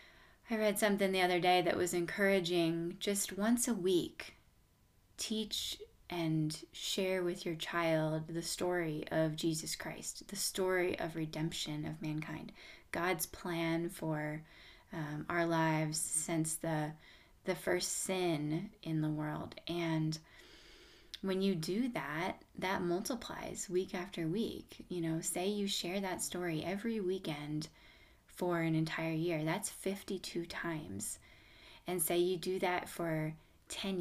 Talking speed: 135 wpm